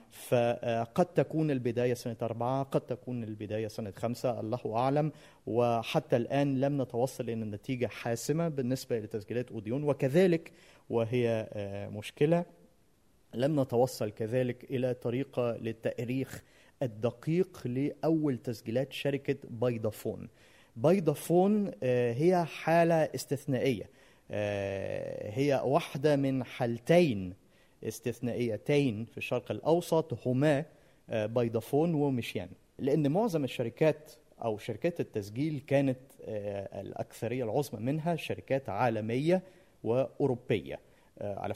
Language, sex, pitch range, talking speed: Arabic, male, 115-145 Hz, 95 wpm